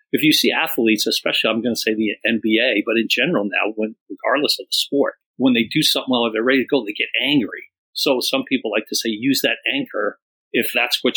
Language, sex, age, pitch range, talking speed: English, male, 40-59, 115-170 Hz, 240 wpm